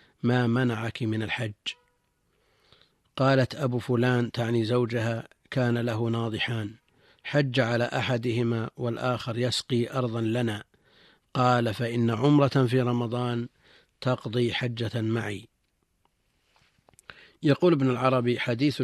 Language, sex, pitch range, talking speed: Arabic, male, 115-130 Hz, 100 wpm